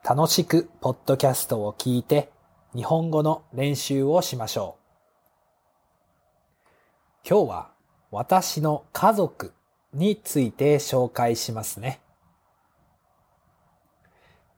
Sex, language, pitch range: male, Japanese, 115-165 Hz